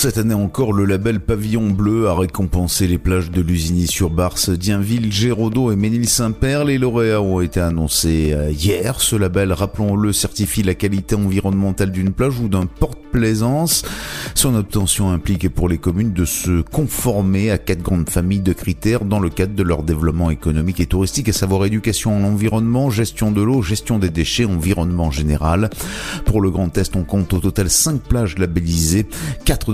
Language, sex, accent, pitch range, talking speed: French, male, French, 90-110 Hz, 165 wpm